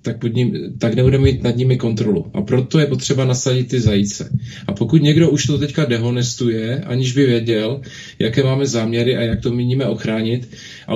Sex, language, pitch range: male, Czech, 115-145 Hz